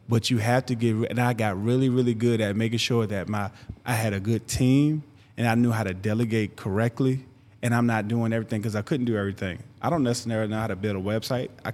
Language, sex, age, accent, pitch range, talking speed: English, male, 20-39, American, 105-120 Hz, 245 wpm